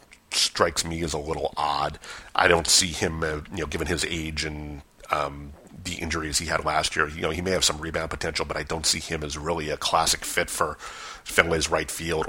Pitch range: 75-85 Hz